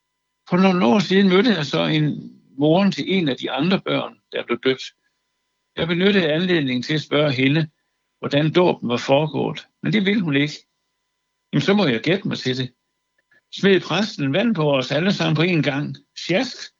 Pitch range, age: 130-180 Hz, 60-79